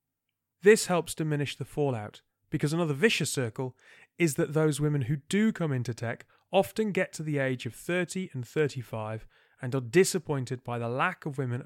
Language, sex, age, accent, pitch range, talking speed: English, male, 30-49, British, 125-170 Hz, 180 wpm